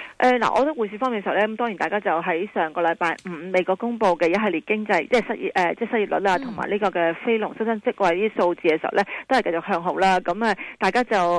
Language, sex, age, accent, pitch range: Chinese, female, 30-49, native, 175-225 Hz